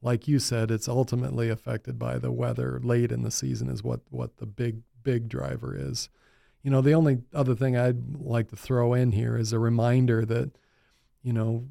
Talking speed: 200 wpm